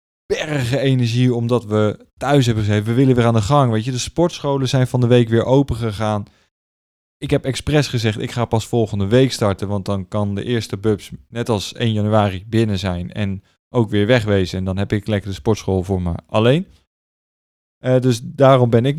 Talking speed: 205 wpm